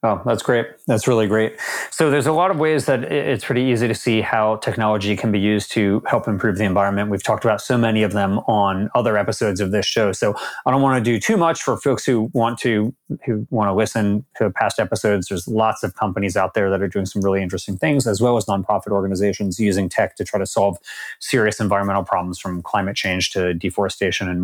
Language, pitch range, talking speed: English, 100-125 Hz, 230 wpm